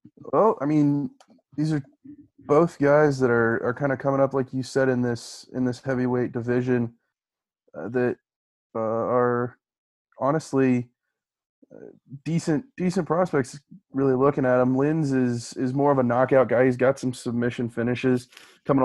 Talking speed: 160 wpm